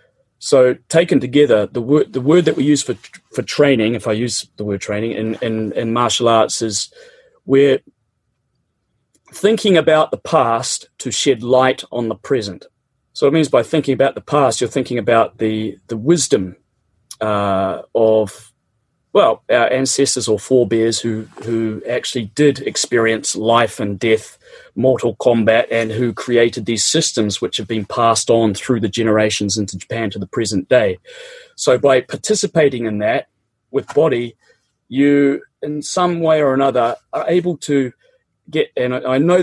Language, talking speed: English, 160 wpm